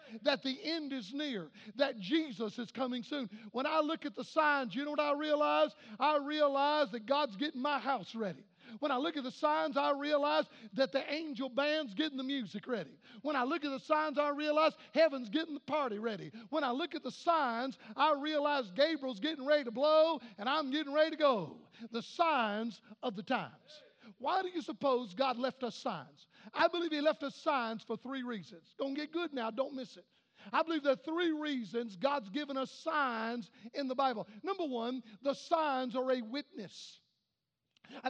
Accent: American